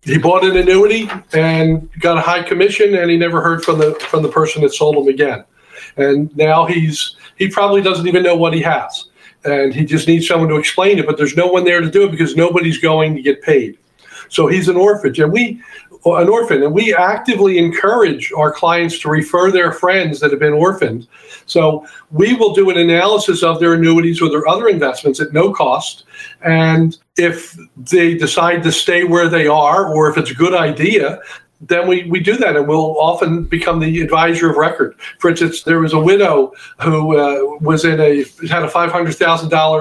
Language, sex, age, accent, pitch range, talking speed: English, male, 50-69, American, 155-185 Hz, 200 wpm